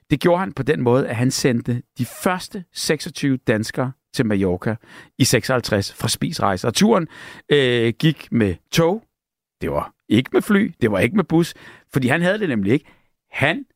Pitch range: 120-155 Hz